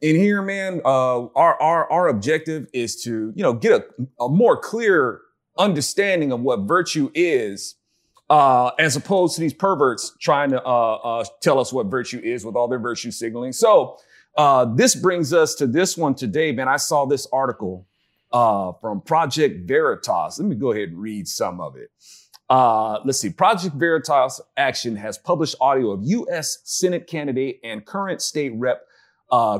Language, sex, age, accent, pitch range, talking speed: English, male, 40-59, American, 120-180 Hz, 175 wpm